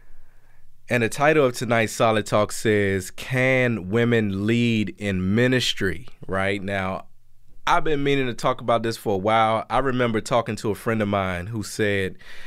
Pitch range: 105-120 Hz